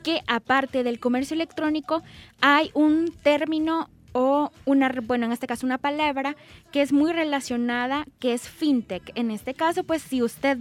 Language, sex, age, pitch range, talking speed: Spanish, female, 10-29, 245-305 Hz, 165 wpm